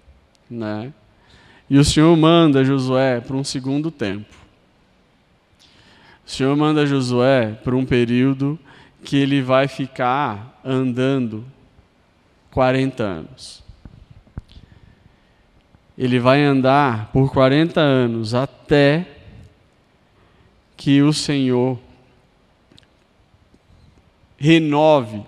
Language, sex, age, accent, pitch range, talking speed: Portuguese, male, 20-39, Brazilian, 120-150 Hz, 85 wpm